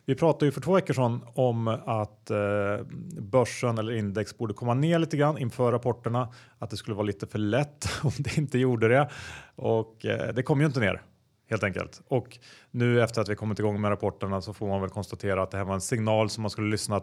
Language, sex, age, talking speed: Swedish, male, 30-49, 230 wpm